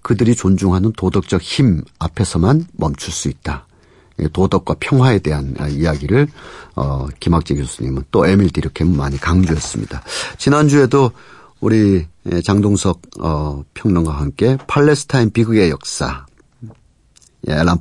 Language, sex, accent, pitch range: Korean, male, native, 80-115 Hz